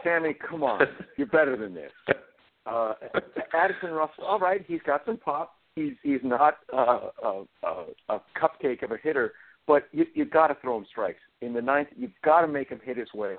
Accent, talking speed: American, 205 wpm